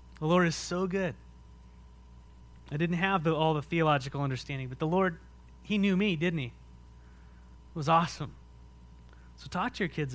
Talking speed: 165 wpm